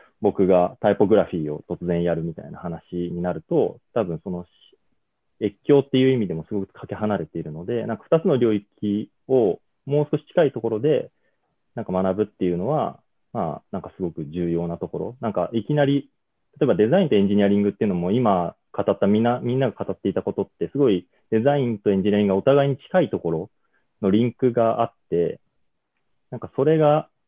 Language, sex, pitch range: English, male, 90-120 Hz